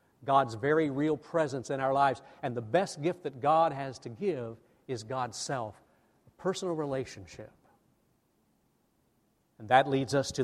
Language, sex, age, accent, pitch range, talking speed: English, male, 50-69, American, 125-155 Hz, 155 wpm